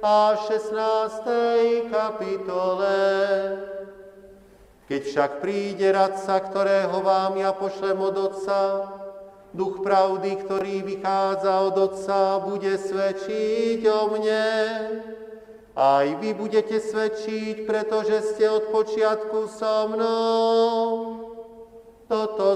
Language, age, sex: Slovak, 40-59, male